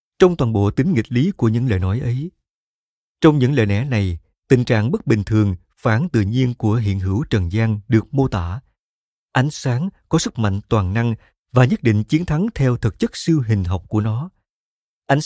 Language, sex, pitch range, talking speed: Vietnamese, male, 105-140 Hz, 210 wpm